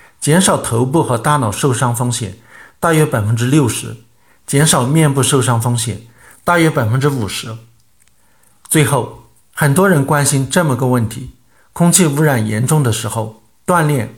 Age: 50-69